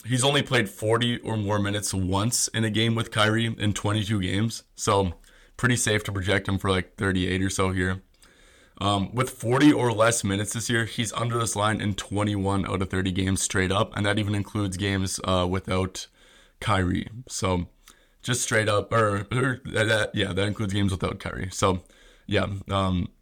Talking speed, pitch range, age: 185 wpm, 95-115 Hz, 20-39